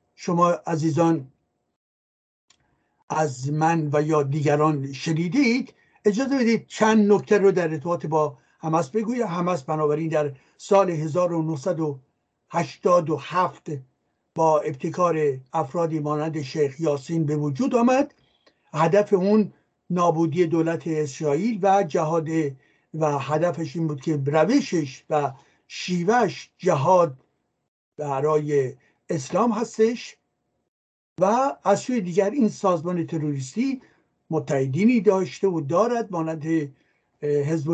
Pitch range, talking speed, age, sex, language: 150-205 Hz, 100 wpm, 60-79, male, Persian